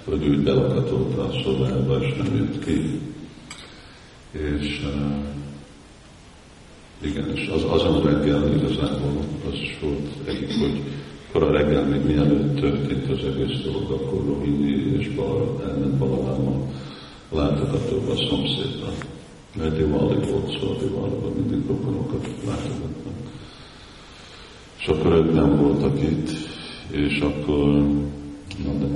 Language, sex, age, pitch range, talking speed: Hungarian, male, 50-69, 70-75 Hz, 125 wpm